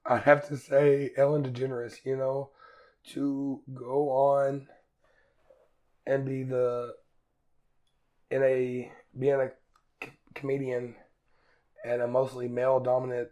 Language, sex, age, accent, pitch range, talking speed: English, male, 30-49, American, 125-145 Hz, 110 wpm